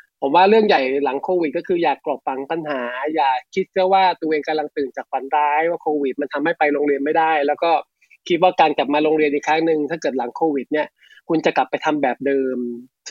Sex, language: male, Thai